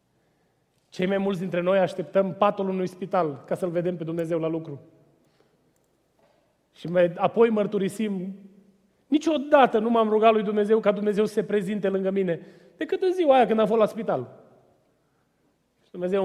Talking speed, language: 155 wpm, Romanian